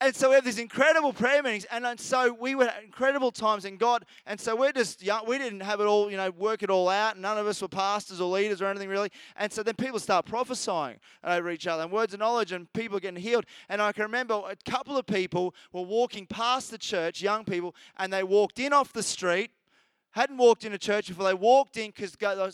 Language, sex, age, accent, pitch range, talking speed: English, male, 20-39, Australian, 185-230 Hz, 250 wpm